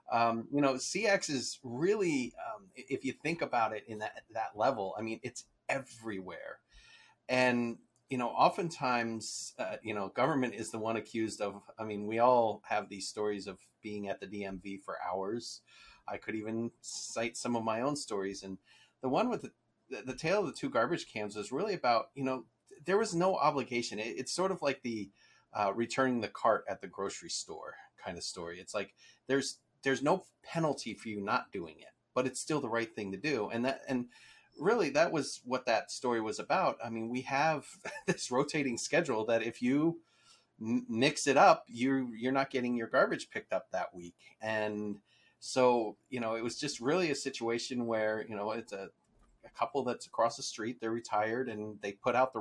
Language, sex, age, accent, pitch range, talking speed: English, male, 30-49, American, 110-135 Hz, 205 wpm